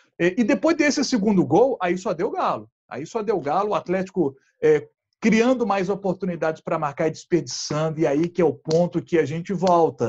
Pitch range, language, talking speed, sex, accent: 170-240 Hz, Portuguese, 195 wpm, male, Brazilian